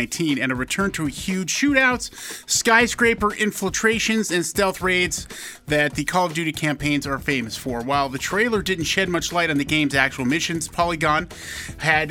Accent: American